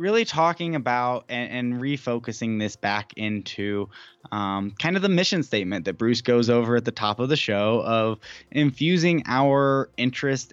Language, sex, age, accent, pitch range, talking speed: English, male, 10-29, American, 105-130 Hz, 165 wpm